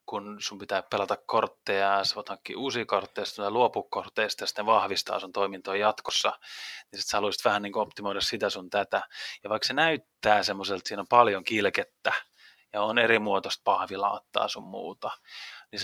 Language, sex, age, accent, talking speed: Finnish, male, 20-39, native, 165 wpm